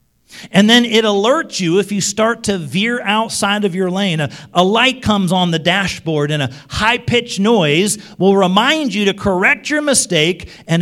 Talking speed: 185 wpm